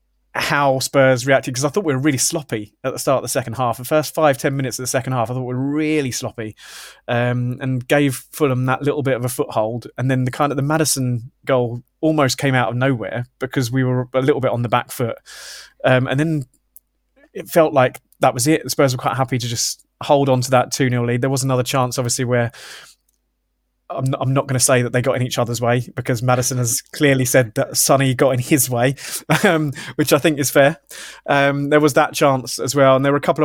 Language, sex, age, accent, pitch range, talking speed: English, male, 20-39, British, 125-140 Hz, 240 wpm